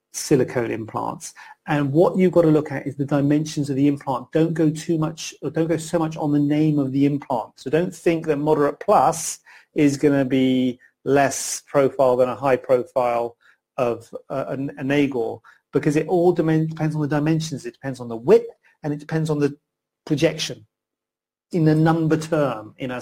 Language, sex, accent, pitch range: English, male, British, 135-160 Hz